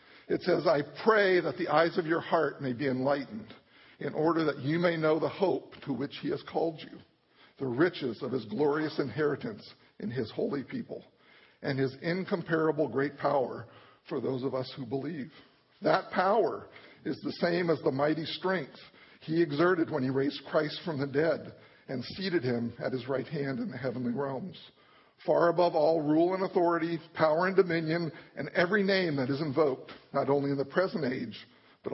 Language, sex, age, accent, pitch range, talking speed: English, male, 50-69, American, 135-170 Hz, 185 wpm